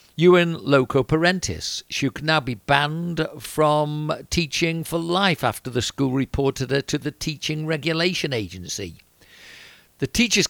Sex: male